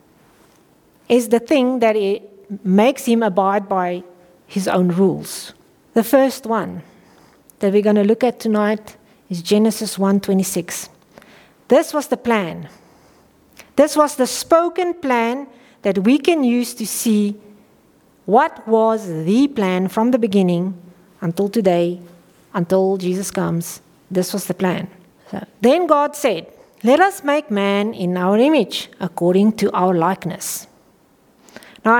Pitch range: 195-250 Hz